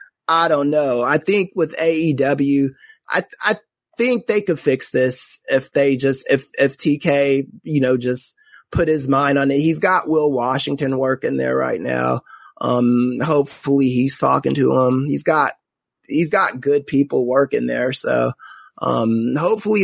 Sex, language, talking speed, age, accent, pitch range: male, English, 165 wpm, 20-39, American, 130-165 Hz